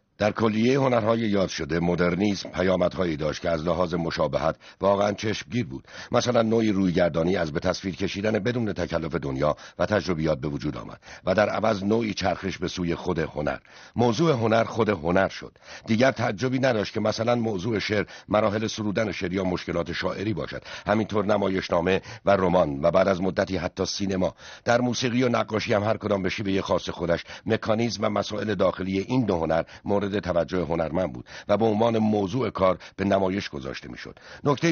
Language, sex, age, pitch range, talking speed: Persian, male, 60-79, 95-115 Hz, 175 wpm